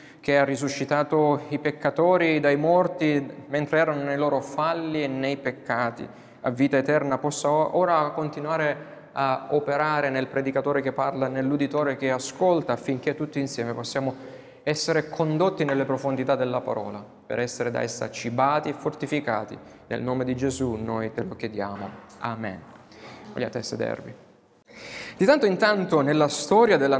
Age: 20-39